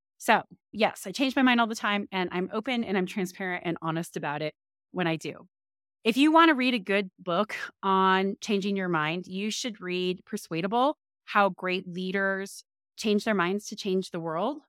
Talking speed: 195 wpm